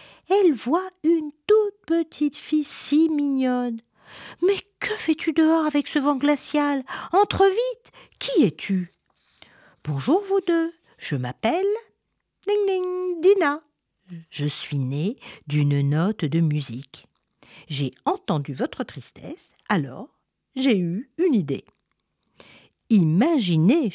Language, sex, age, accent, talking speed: French, female, 50-69, French, 115 wpm